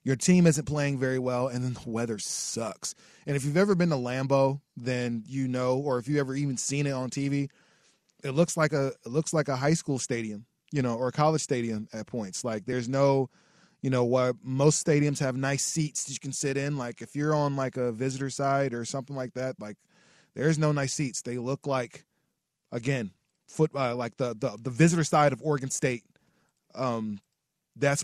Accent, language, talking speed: American, English, 210 wpm